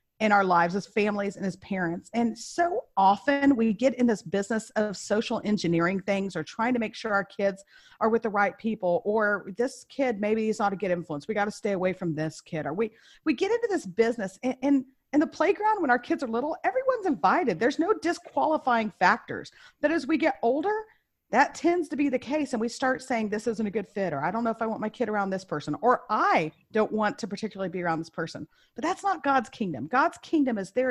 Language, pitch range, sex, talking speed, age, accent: English, 200-280 Hz, female, 235 wpm, 40-59, American